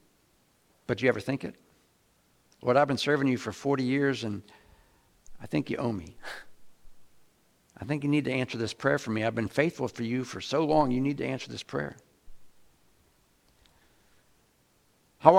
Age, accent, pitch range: 60-79, American, 125-170 Hz